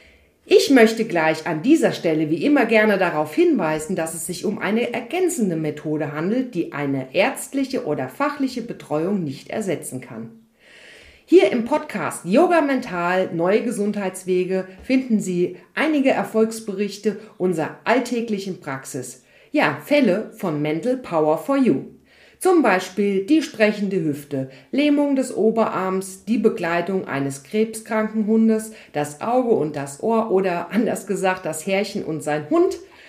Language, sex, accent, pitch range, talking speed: German, female, German, 180-240 Hz, 135 wpm